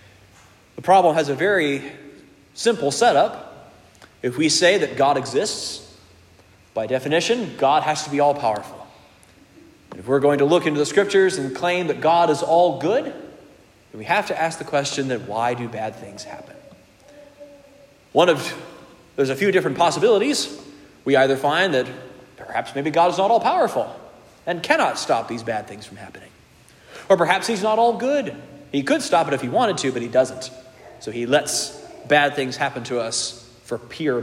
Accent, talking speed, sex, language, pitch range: American, 170 wpm, male, English, 120-155 Hz